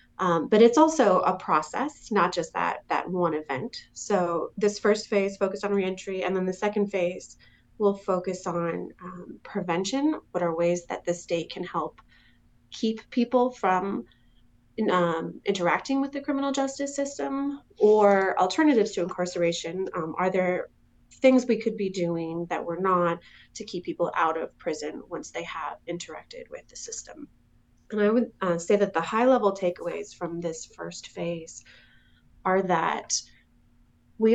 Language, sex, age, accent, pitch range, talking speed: English, female, 30-49, American, 170-220 Hz, 160 wpm